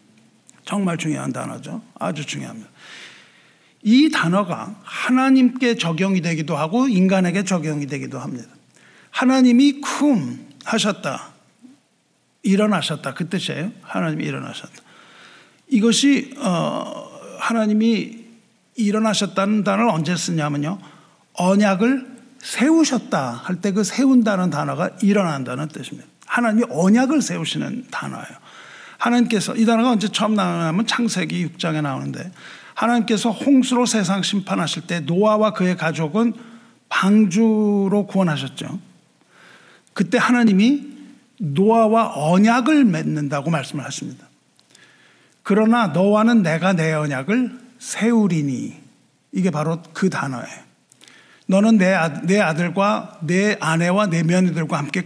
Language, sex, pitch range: Korean, male, 170-230 Hz